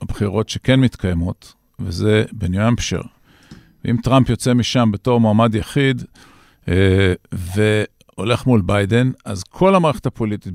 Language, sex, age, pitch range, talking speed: Hebrew, male, 50-69, 110-135 Hz, 115 wpm